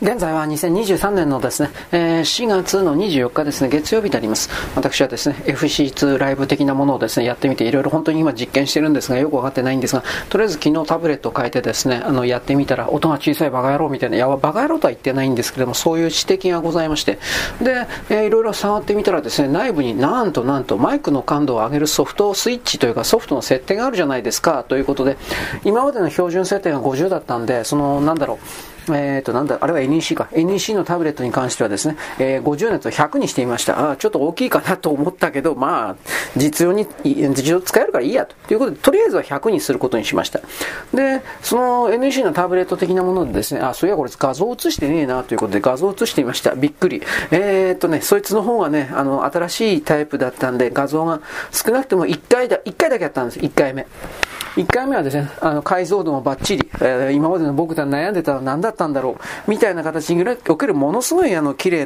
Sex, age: male, 40-59